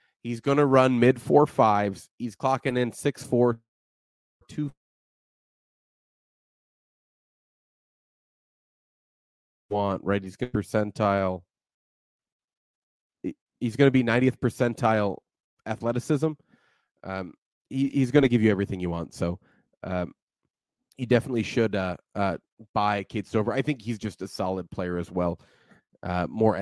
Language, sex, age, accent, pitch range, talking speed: English, male, 30-49, American, 100-135 Hz, 125 wpm